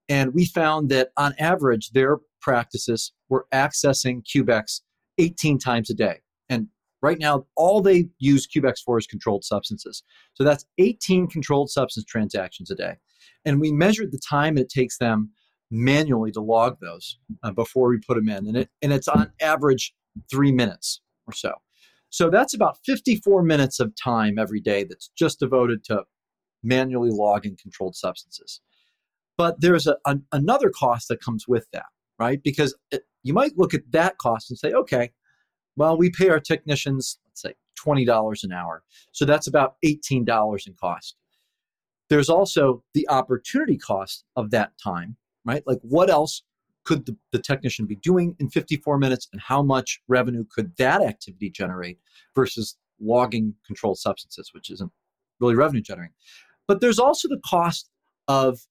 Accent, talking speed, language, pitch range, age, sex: American, 160 wpm, English, 115-155 Hz, 40-59, male